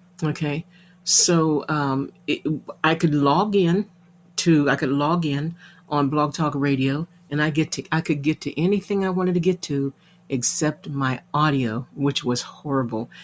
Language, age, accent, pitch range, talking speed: English, 50-69, American, 145-180 Hz, 165 wpm